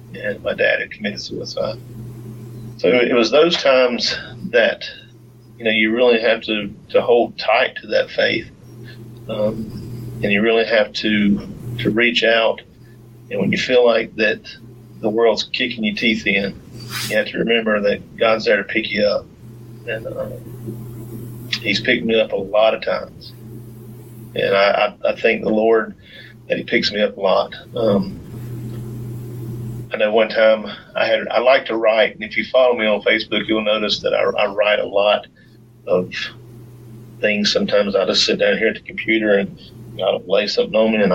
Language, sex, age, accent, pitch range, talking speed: English, male, 40-59, American, 110-120 Hz, 180 wpm